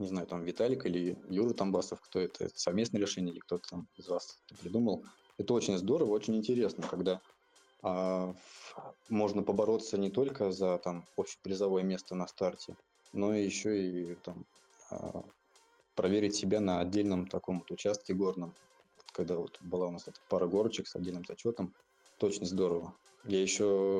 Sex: male